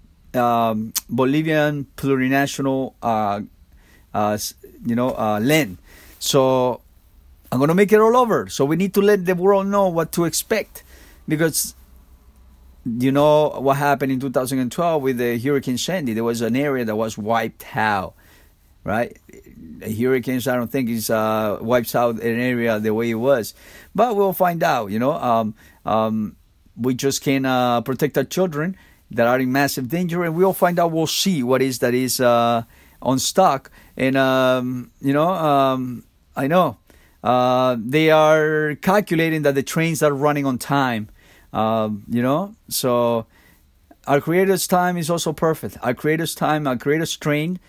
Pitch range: 115-155 Hz